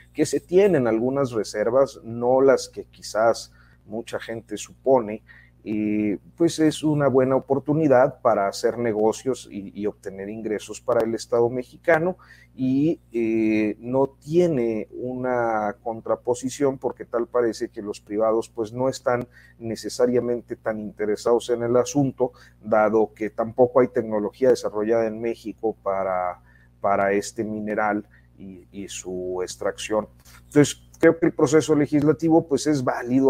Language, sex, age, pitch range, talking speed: Spanish, male, 40-59, 105-130 Hz, 135 wpm